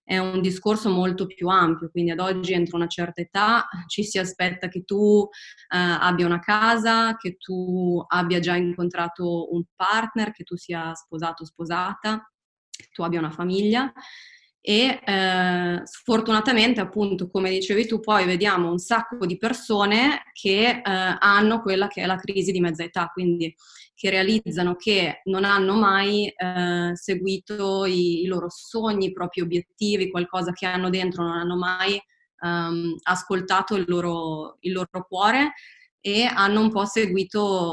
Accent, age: native, 20-39